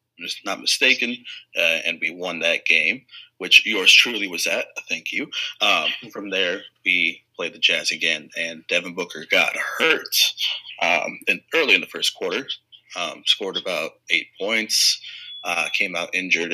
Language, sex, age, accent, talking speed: English, male, 30-49, American, 160 wpm